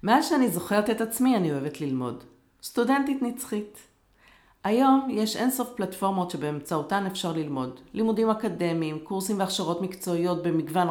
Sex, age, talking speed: female, 40-59, 125 wpm